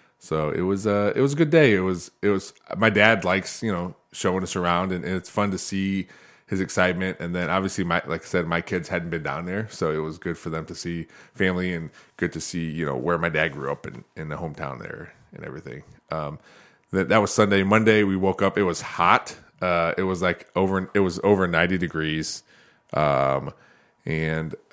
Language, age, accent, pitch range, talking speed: English, 20-39, American, 80-95 Hz, 230 wpm